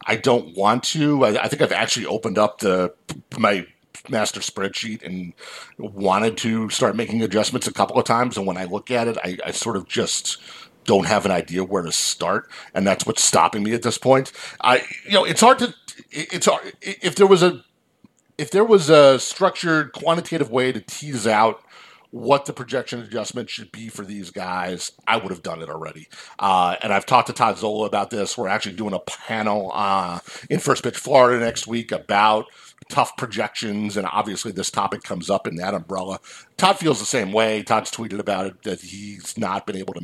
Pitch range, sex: 90-125 Hz, male